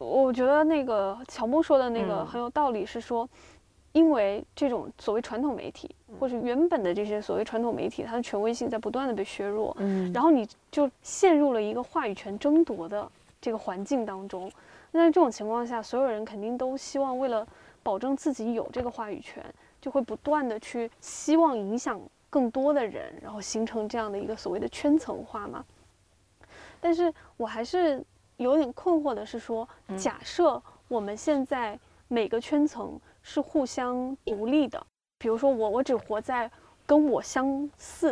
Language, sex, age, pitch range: Chinese, female, 20-39, 215-285 Hz